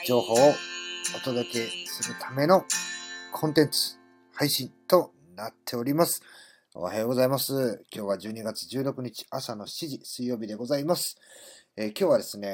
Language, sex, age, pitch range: Japanese, male, 40-59, 100-135 Hz